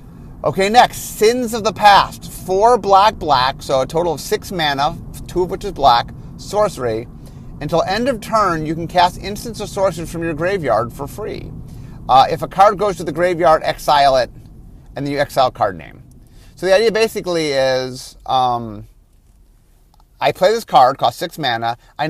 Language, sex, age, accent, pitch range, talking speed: English, male, 30-49, American, 130-195 Hz, 180 wpm